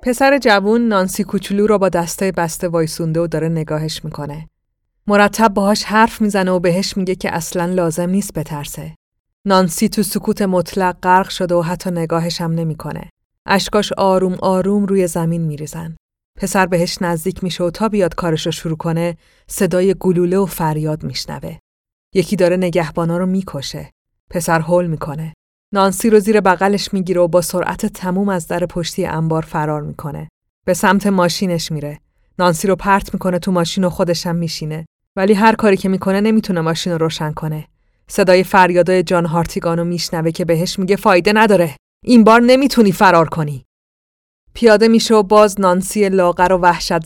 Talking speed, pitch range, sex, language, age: 160 wpm, 165-195 Hz, female, Persian, 30-49